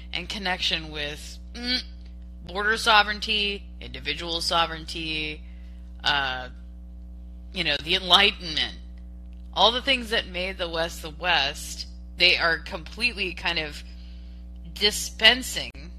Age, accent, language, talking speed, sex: 20-39, American, English, 100 wpm, female